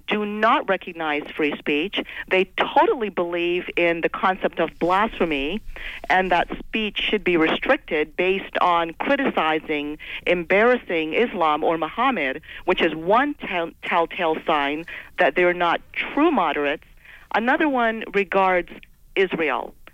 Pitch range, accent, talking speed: 175-230 Hz, American, 120 wpm